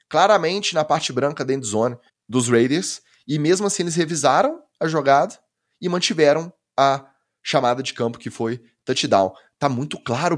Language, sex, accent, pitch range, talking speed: Portuguese, male, Brazilian, 120-160 Hz, 160 wpm